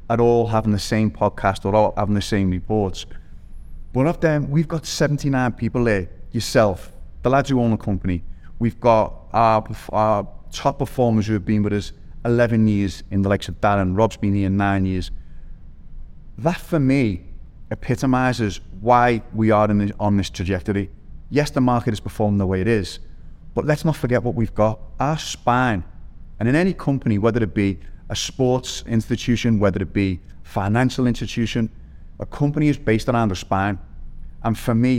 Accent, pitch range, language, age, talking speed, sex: British, 95-120 Hz, English, 30-49, 175 wpm, male